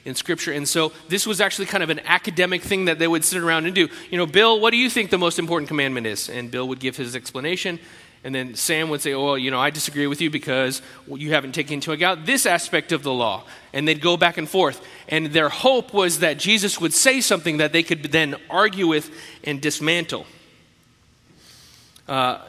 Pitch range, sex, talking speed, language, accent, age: 140-180 Hz, male, 225 wpm, English, American, 30-49